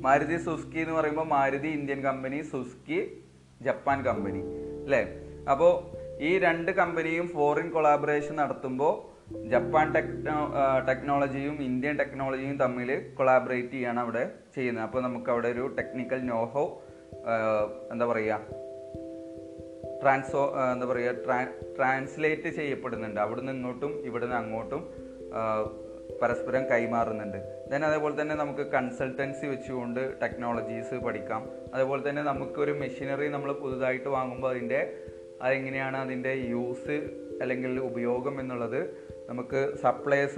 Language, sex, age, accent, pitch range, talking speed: Malayalam, male, 30-49, native, 115-135 Hz, 105 wpm